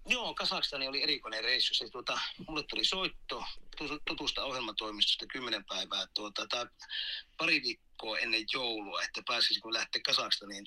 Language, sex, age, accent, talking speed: Finnish, male, 30-49, native, 145 wpm